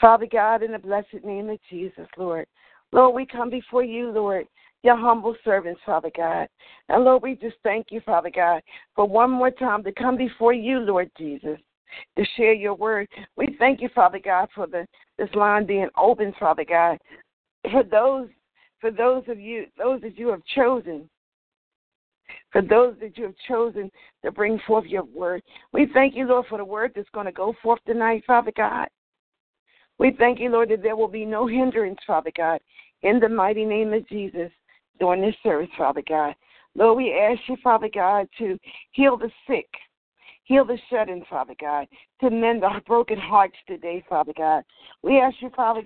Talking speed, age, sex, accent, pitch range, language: 185 wpm, 50-69, female, American, 190-245 Hz, English